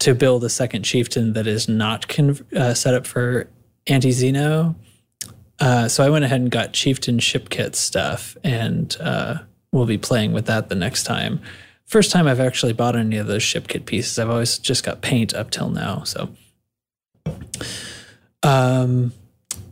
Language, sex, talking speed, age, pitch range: English, male, 175 wpm, 20-39, 125-150 Hz